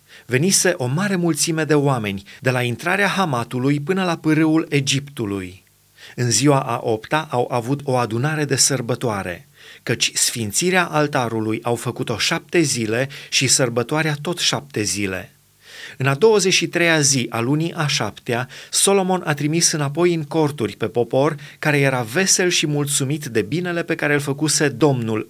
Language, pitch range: Romanian, 120-160 Hz